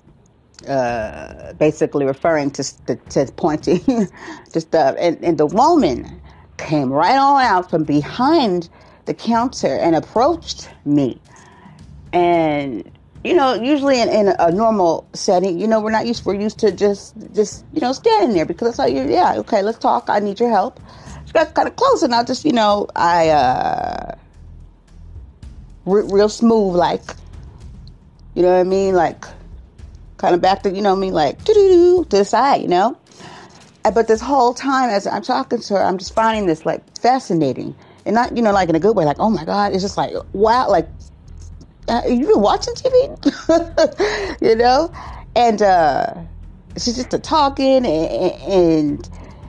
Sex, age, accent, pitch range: female, 40-59, American, 150-240 Hz